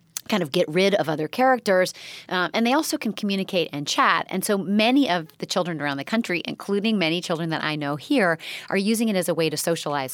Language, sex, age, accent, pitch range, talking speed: English, female, 30-49, American, 160-200 Hz, 230 wpm